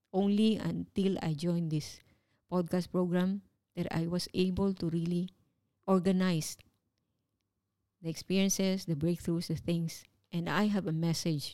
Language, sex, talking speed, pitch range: English, female, 130 wpm, 155-185 Hz